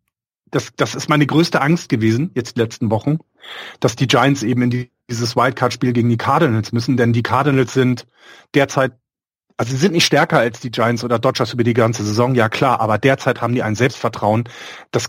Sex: male